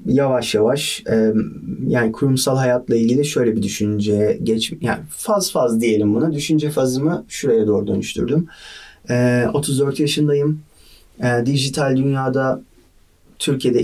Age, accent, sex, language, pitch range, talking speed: 30-49, native, male, Turkish, 110-130 Hz, 110 wpm